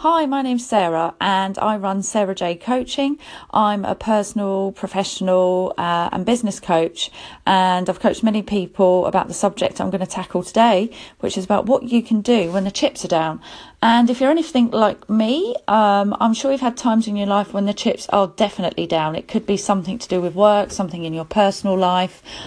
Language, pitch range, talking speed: English, 180-215 Hz, 205 wpm